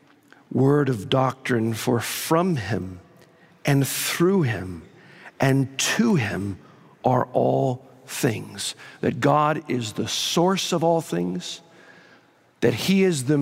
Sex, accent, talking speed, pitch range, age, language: male, American, 120 wpm, 135-185 Hz, 50-69, English